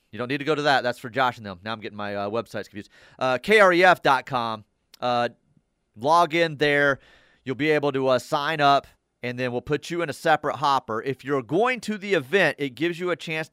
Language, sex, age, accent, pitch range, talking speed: English, male, 30-49, American, 120-150 Hz, 225 wpm